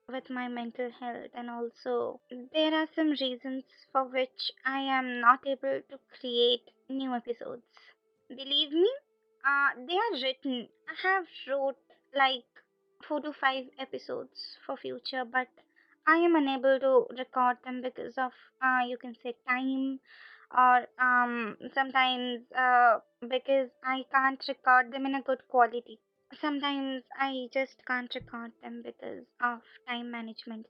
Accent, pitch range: native, 245-275 Hz